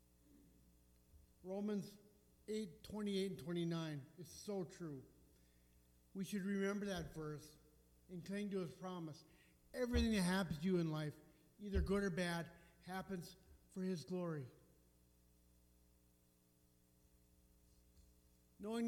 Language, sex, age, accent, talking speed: English, male, 50-69, American, 110 wpm